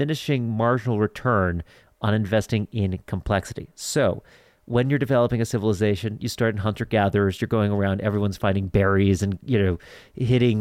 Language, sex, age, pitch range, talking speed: English, male, 40-59, 100-125 Hz, 155 wpm